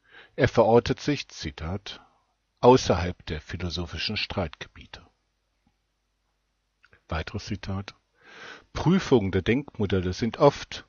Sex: male